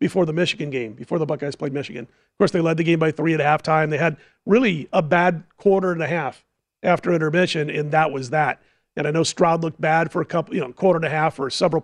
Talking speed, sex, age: 260 wpm, male, 40-59